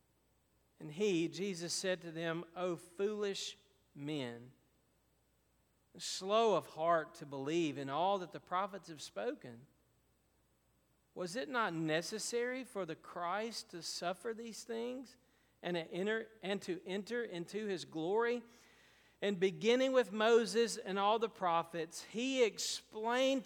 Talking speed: 125 wpm